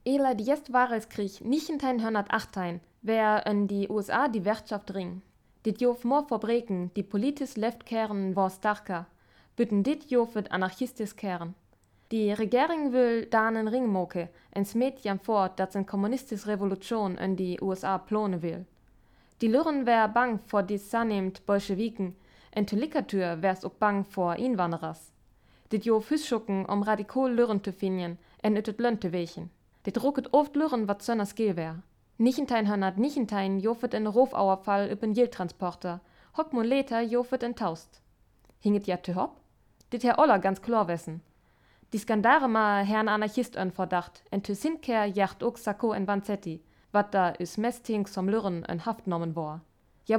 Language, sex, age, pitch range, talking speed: German, female, 20-39, 190-235 Hz, 155 wpm